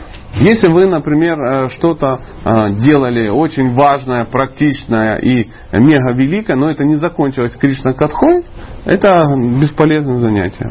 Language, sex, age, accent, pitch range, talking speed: Russian, male, 40-59, native, 115-180 Hz, 110 wpm